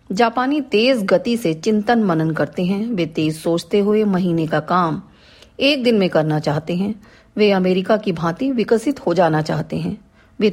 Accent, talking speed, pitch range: native, 175 wpm, 170-235 Hz